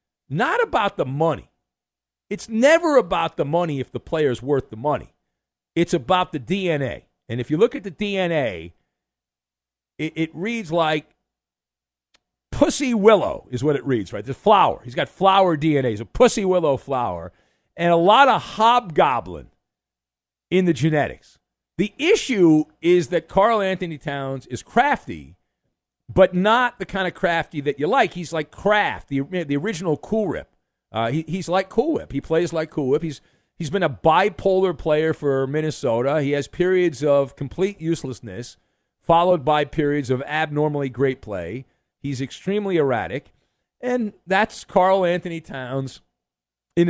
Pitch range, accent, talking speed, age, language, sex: 125-190 Hz, American, 155 wpm, 50-69, English, male